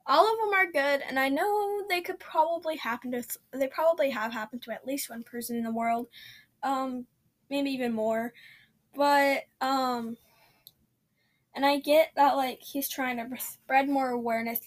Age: 10-29